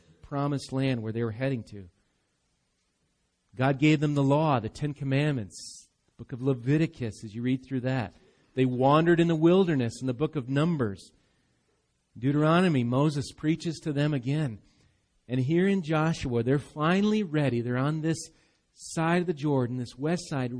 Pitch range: 120-155 Hz